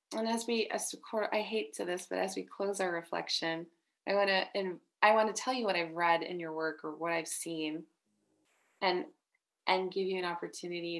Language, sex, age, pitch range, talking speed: English, female, 20-39, 170-215 Hz, 190 wpm